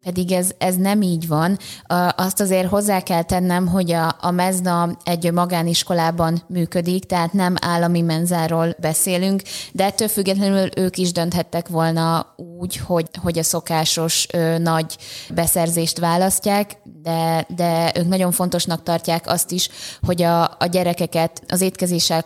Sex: female